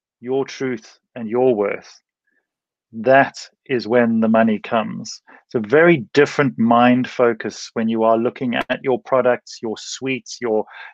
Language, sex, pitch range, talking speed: English, male, 115-130 Hz, 145 wpm